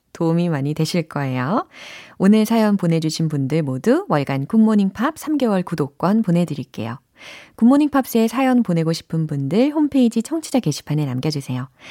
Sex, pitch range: female, 150-240 Hz